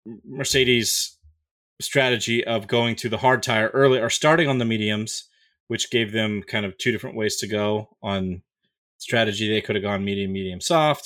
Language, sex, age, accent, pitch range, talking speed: English, male, 30-49, American, 100-120 Hz, 180 wpm